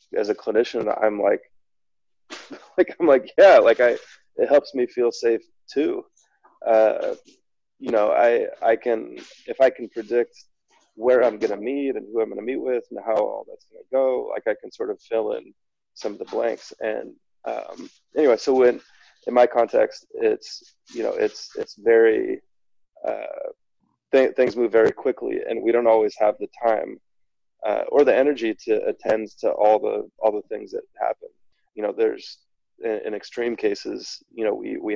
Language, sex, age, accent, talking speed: English, male, 20-39, American, 185 wpm